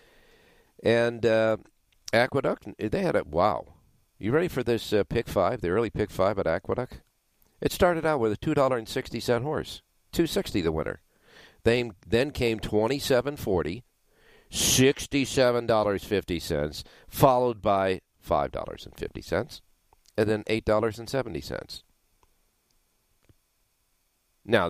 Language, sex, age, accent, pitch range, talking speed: English, male, 50-69, American, 90-115 Hz, 140 wpm